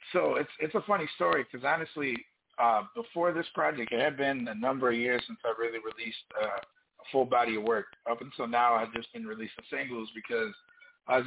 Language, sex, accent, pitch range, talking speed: English, male, American, 125-175 Hz, 210 wpm